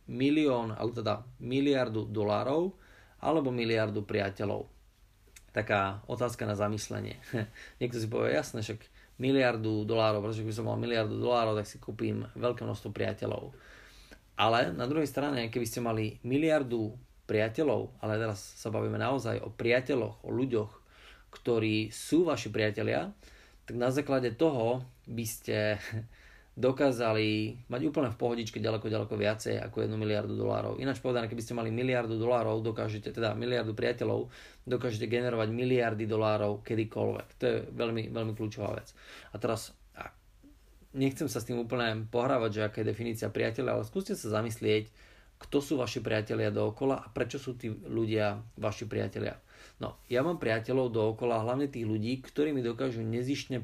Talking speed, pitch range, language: 150 wpm, 110-125 Hz, Slovak